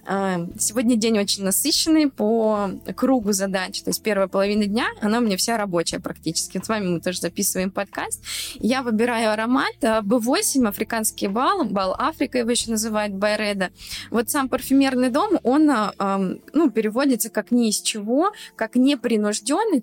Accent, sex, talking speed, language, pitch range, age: native, female, 150 wpm, Russian, 200-255 Hz, 20-39